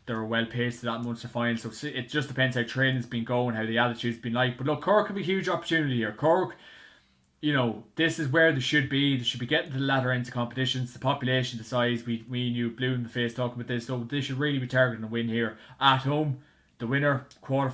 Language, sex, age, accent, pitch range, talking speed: English, male, 20-39, Irish, 120-145 Hz, 255 wpm